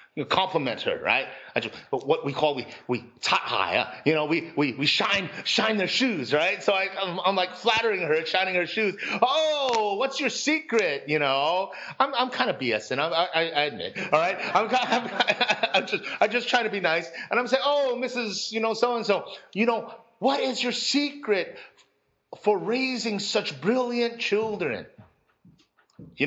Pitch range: 150-235 Hz